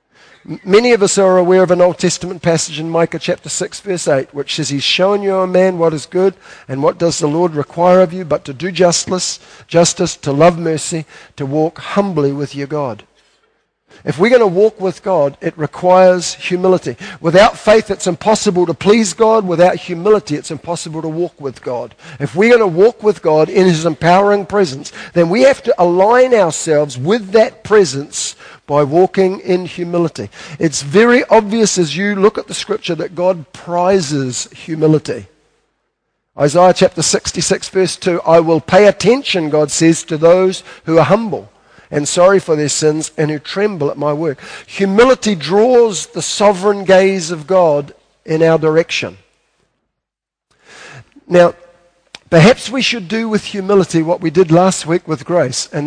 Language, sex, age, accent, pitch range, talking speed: English, male, 50-69, Australian, 155-195 Hz, 175 wpm